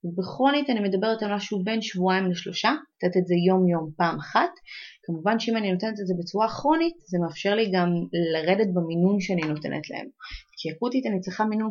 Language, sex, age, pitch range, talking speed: Hebrew, female, 30-49, 175-220 Hz, 190 wpm